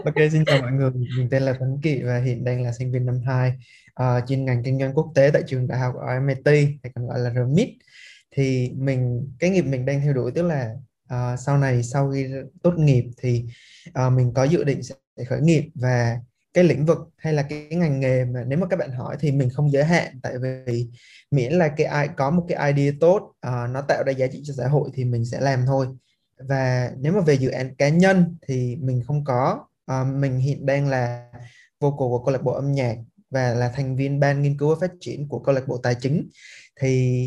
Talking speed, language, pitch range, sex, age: 235 wpm, Vietnamese, 125-150 Hz, male, 20-39